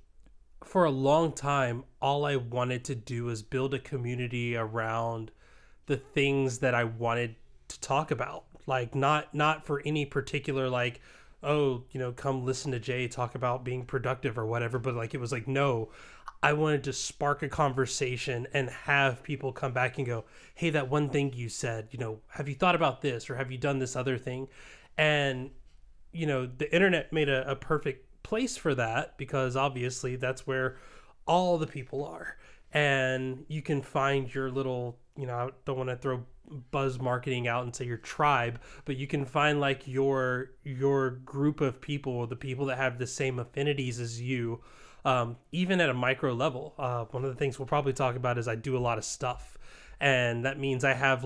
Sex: male